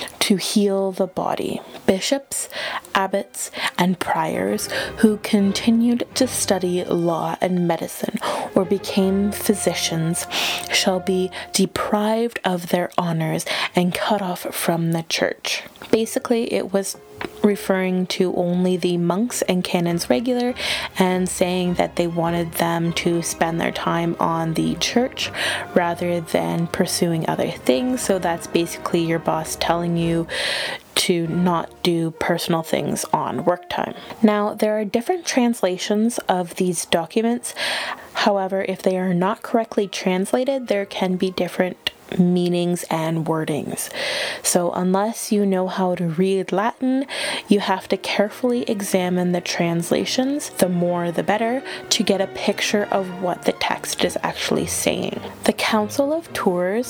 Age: 20-39